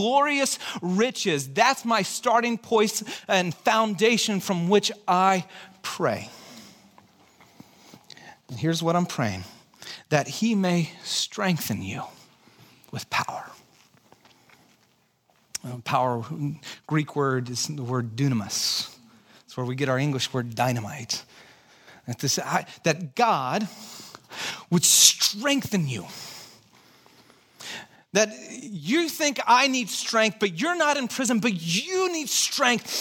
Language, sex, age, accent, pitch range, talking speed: English, male, 40-59, American, 165-235 Hz, 115 wpm